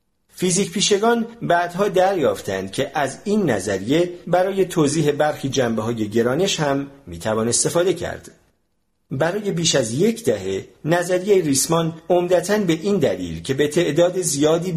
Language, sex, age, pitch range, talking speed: Persian, male, 50-69, 120-170 Hz, 130 wpm